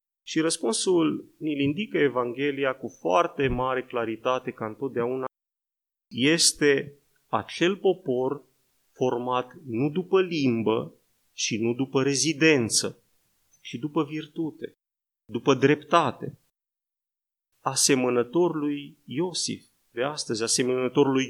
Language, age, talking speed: Romanian, 30-49, 95 wpm